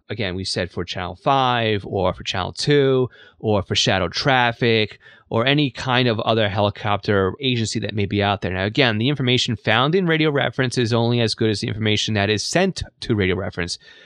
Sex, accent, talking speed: male, American, 200 wpm